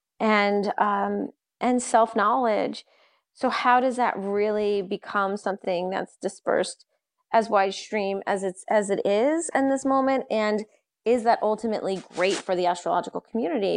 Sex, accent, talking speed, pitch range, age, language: female, American, 145 wpm, 195-230 Hz, 30-49, English